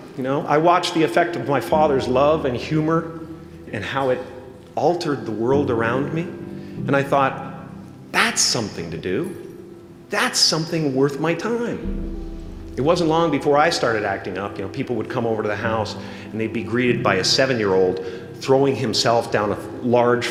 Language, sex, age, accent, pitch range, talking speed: English, male, 40-59, American, 120-180 Hz, 180 wpm